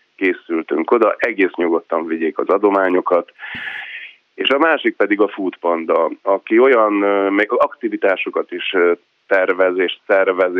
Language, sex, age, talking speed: Hungarian, male, 30-49, 125 wpm